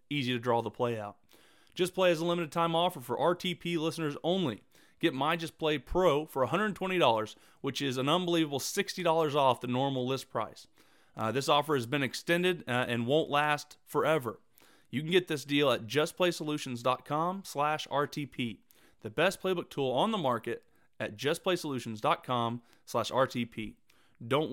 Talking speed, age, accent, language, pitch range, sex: 160 wpm, 30-49, American, English, 125-170 Hz, male